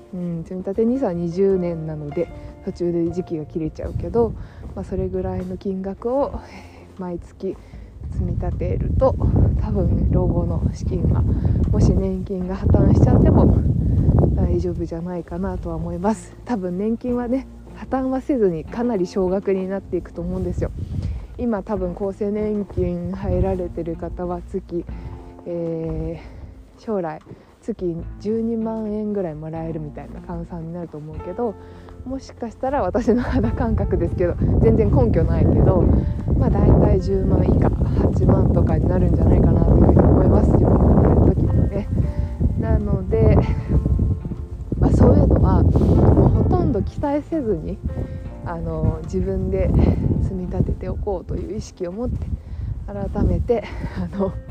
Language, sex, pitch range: Japanese, female, 155-205 Hz